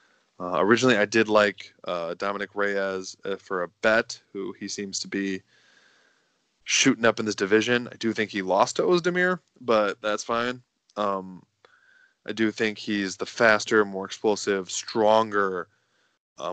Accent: American